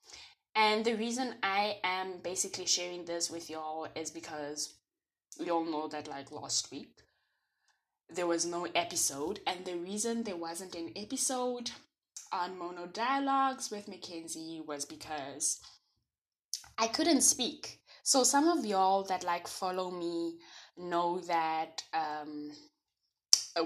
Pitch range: 155-195 Hz